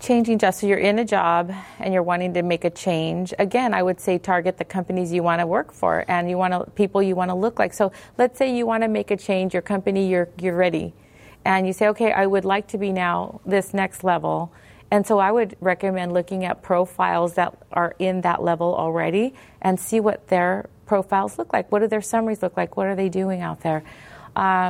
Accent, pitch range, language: American, 180-210 Hz, English